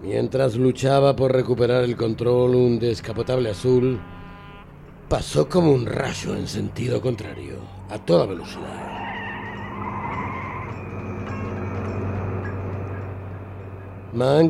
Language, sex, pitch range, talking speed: Spanish, male, 95-125 Hz, 85 wpm